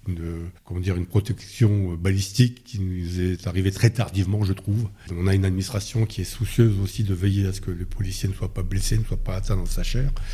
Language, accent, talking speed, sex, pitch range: French, French, 230 wpm, male, 95-125 Hz